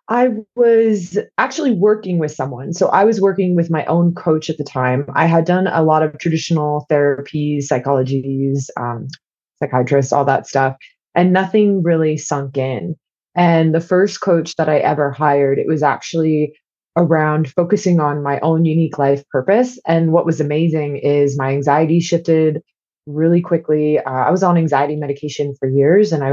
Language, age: English, 20-39